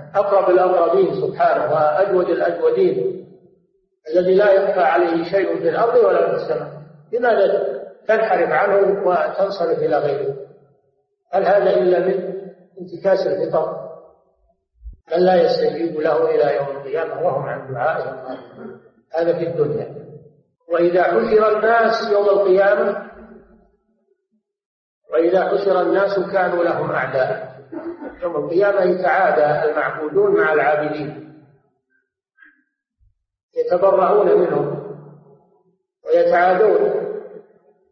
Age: 50-69